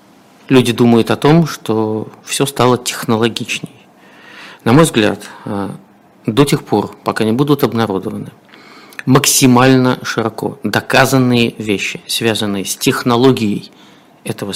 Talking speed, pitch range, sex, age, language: 105 wpm, 105-125 Hz, male, 50-69, Russian